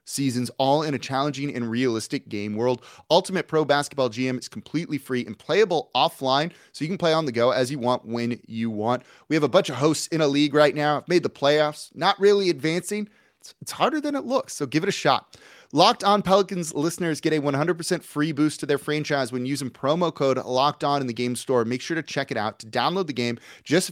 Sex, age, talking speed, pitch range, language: male, 30-49, 235 wpm, 120-155 Hz, English